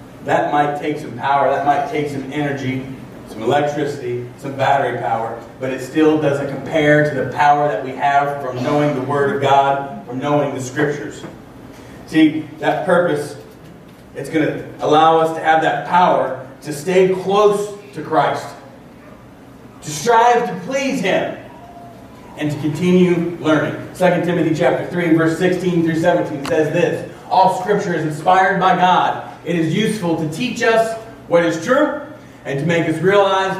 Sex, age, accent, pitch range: male, 40-59, American, 145-185 Hz